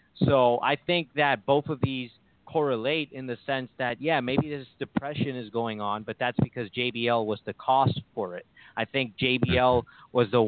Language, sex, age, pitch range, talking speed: English, male, 30-49, 115-135 Hz, 190 wpm